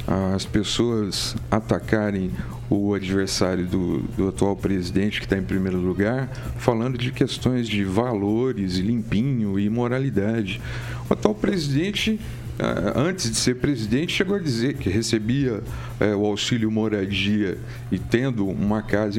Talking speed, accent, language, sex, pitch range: 130 wpm, Brazilian, Portuguese, male, 105-135 Hz